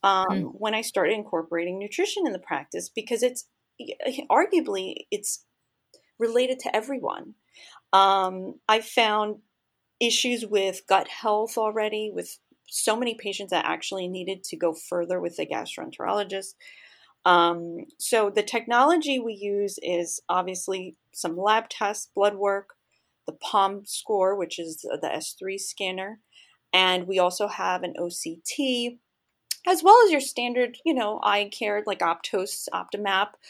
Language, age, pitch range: English, 30-49, 190-245 Hz